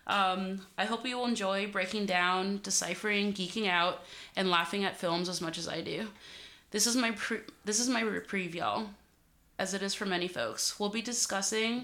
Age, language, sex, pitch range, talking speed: 20-39, English, female, 180-220 Hz, 195 wpm